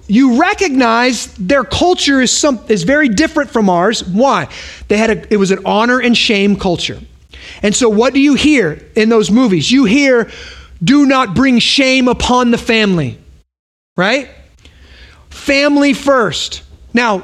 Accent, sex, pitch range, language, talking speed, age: American, male, 220-285 Hz, English, 155 wpm, 30-49